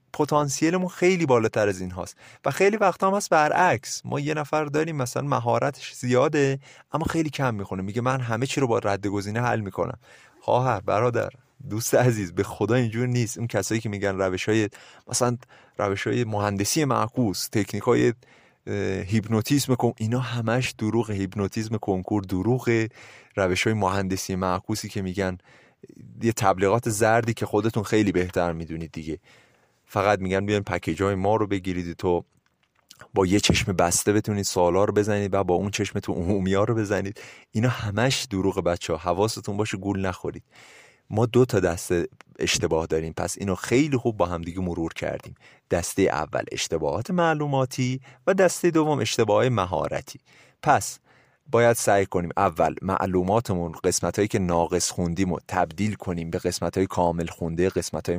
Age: 30-49